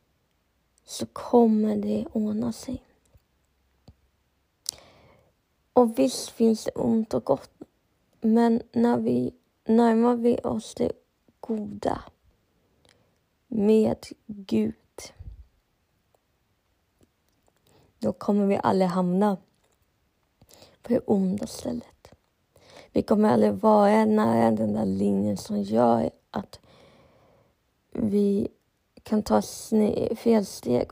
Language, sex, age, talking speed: Swedish, female, 20-39, 95 wpm